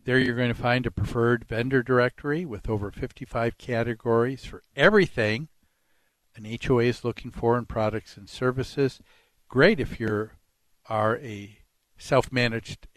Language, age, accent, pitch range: English, 60-79, American, 120-160 Hz